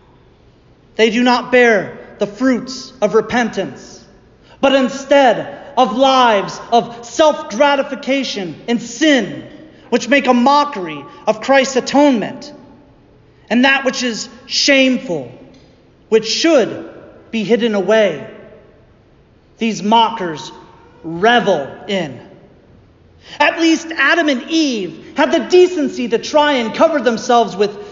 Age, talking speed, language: 40-59, 110 wpm, English